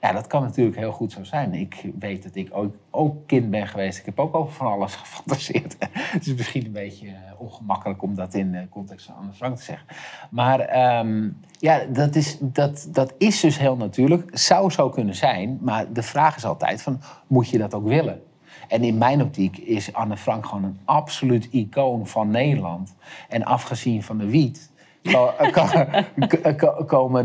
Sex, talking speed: male, 180 wpm